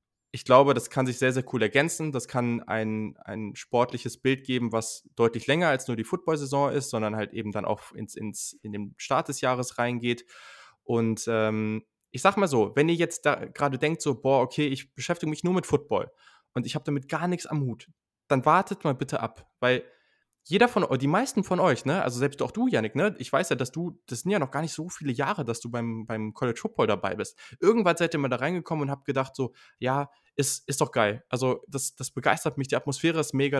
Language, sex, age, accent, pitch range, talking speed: German, male, 20-39, German, 115-150 Hz, 235 wpm